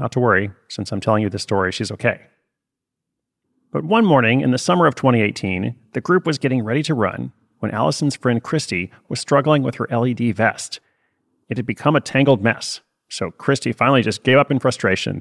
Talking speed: 195 wpm